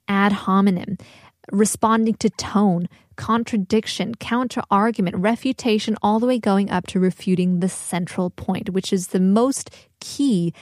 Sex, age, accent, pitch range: female, 20-39, American, 185-225 Hz